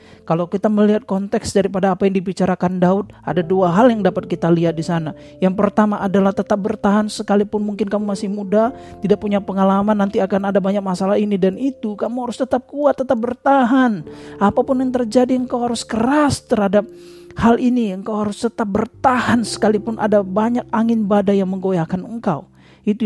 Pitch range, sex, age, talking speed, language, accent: 175-225 Hz, male, 40-59, 175 wpm, Indonesian, native